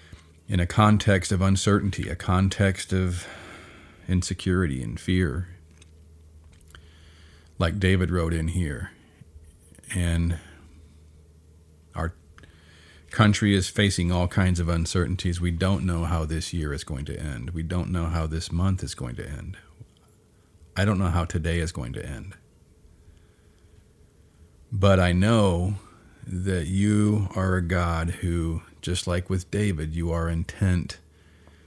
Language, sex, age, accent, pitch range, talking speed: English, male, 40-59, American, 80-95 Hz, 135 wpm